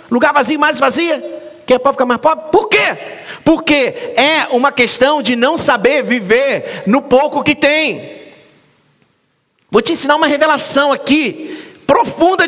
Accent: Brazilian